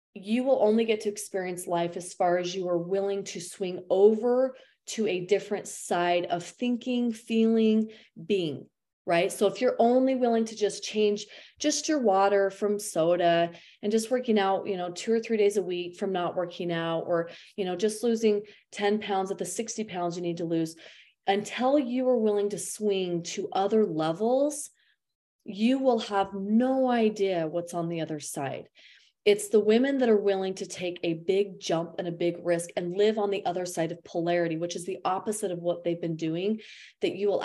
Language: English